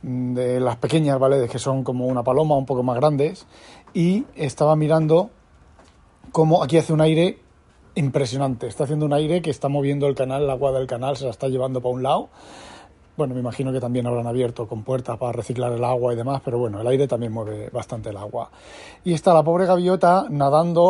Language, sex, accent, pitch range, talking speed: Spanish, male, Spanish, 125-150 Hz, 205 wpm